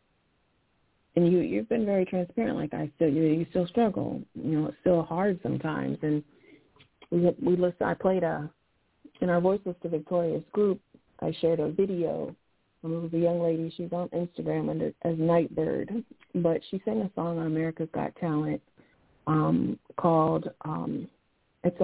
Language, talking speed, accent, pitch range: English, 160 wpm, American, 155-180 Hz